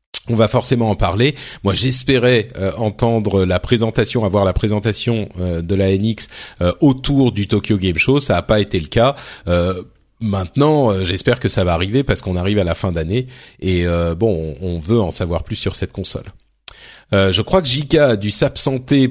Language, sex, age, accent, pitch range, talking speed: French, male, 40-59, French, 100-135 Hz, 200 wpm